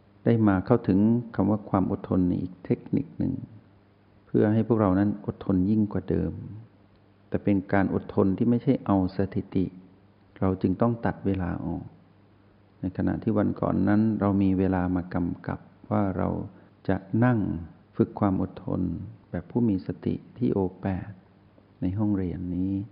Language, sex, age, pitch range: Thai, male, 60-79, 95-105 Hz